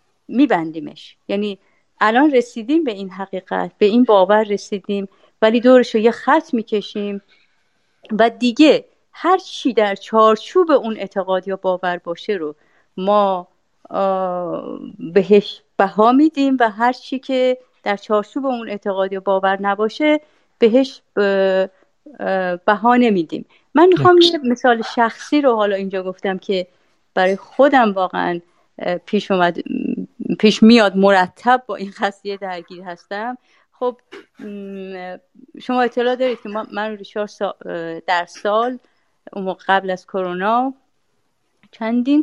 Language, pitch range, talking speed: Persian, 195-255 Hz, 115 wpm